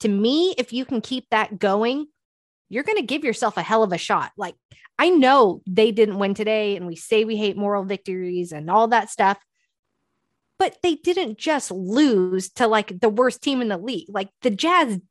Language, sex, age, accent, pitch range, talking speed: English, female, 20-39, American, 200-240 Hz, 205 wpm